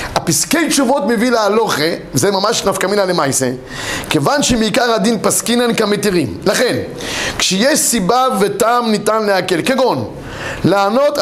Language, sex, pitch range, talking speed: Hebrew, male, 200-260 Hz, 120 wpm